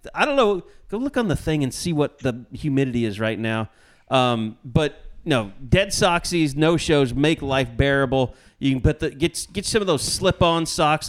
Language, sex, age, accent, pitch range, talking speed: English, male, 30-49, American, 125-165 Hz, 205 wpm